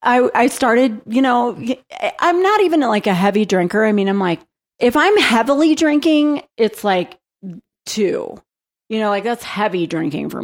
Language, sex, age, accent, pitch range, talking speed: English, female, 30-49, American, 190-255 Hz, 170 wpm